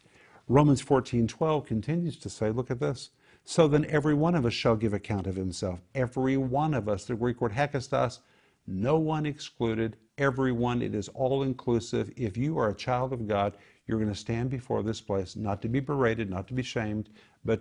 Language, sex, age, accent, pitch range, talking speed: English, male, 50-69, American, 105-130 Hz, 200 wpm